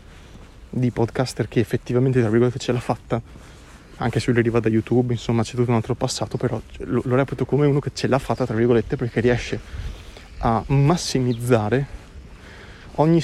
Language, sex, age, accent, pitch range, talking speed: Italian, male, 30-49, native, 110-135 Hz, 170 wpm